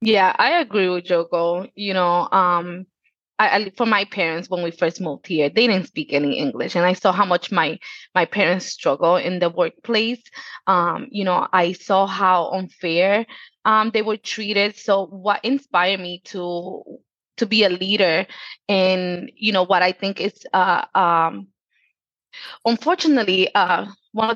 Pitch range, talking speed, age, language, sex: 175-215 Hz, 170 wpm, 20-39, English, female